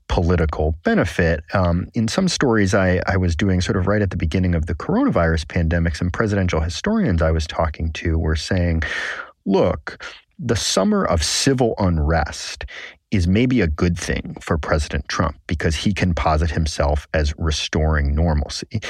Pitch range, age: 80-100 Hz, 40-59